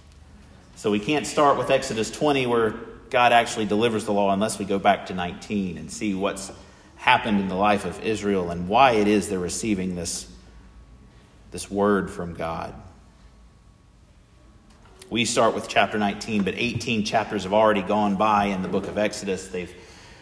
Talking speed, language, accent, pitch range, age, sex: 170 wpm, English, American, 95-115 Hz, 40-59, male